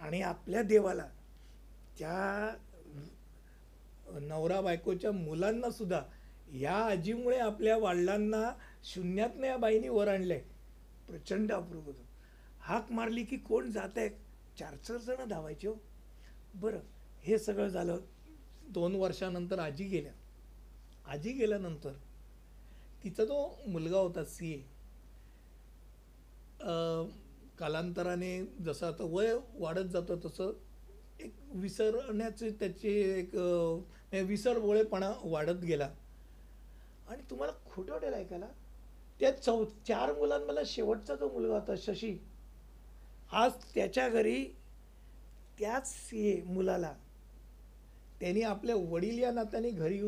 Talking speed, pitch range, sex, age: 80 wpm, 160-215 Hz, male, 60-79